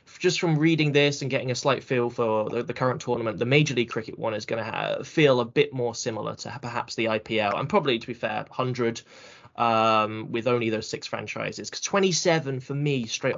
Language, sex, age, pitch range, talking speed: English, male, 10-29, 115-140 Hz, 220 wpm